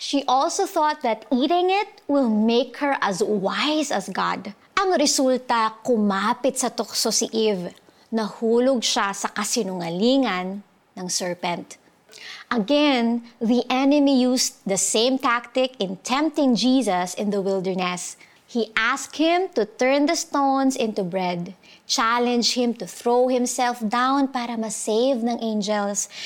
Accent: native